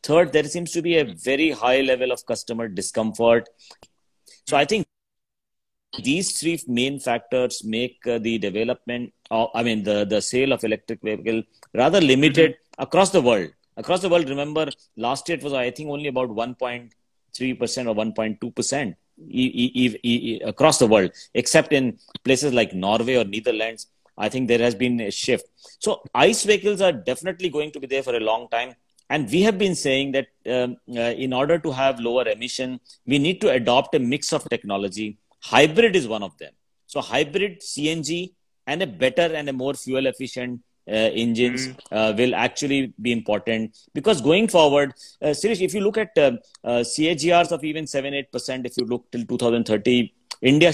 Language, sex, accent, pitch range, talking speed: English, male, Indian, 120-155 Hz, 175 wpm